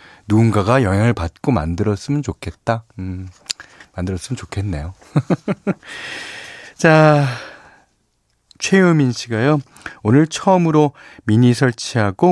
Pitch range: 95-140 Hz